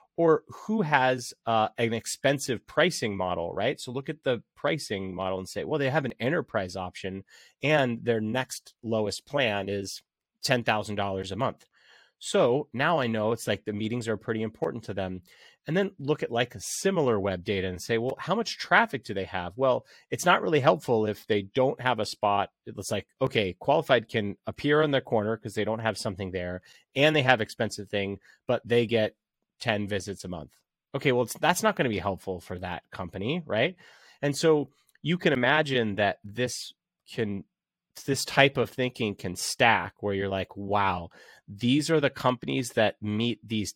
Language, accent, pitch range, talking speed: English, American, 100-130 Hz, 190 wpm